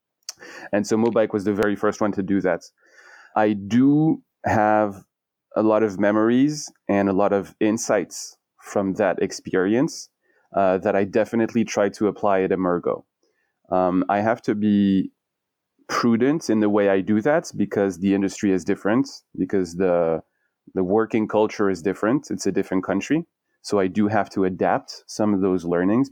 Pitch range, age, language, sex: 95-105 Hz, 30-49, English, male